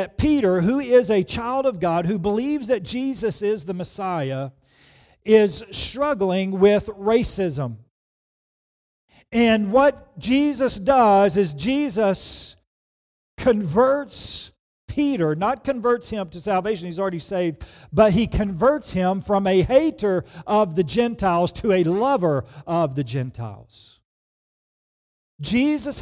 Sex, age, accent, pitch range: male, 40-59, American, 140-220 Hz